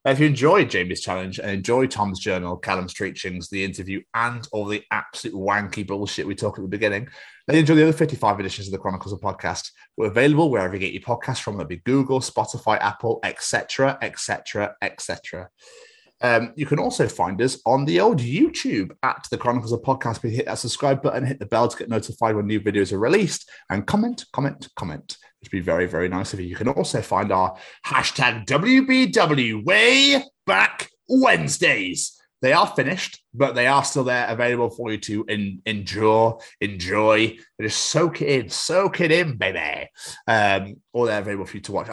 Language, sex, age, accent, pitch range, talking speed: English, male, 30-49, British, 100-140 Hz, 195 wpm